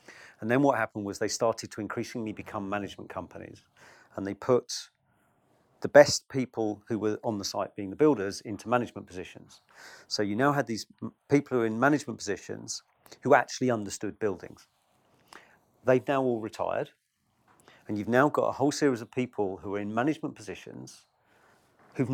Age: 40-59